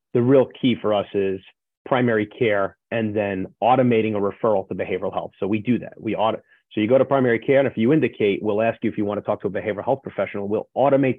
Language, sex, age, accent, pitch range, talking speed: English, male, 30-49, American, 100-125 Hz, 250 wpm